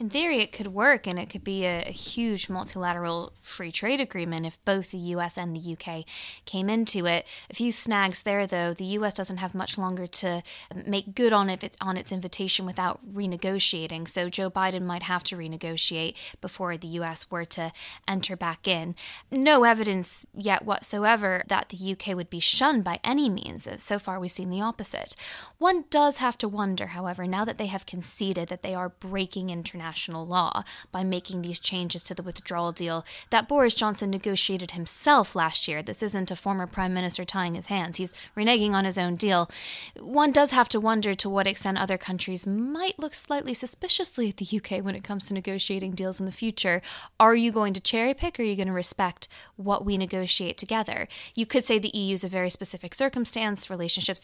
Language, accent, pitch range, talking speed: English, American, 180-215 Hz, 200 wpm